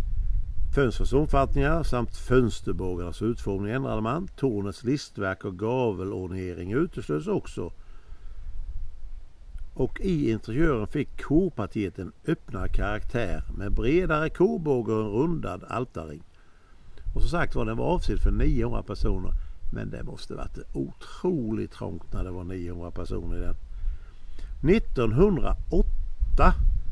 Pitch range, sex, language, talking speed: 85-135 Hz, male, Swedish, 110 wpm